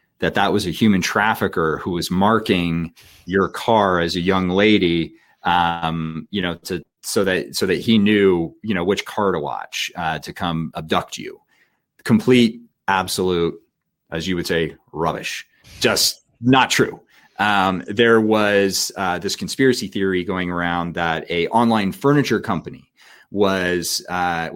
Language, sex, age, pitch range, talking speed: English, male, 30-49, 85-105 Hz, 150 wpm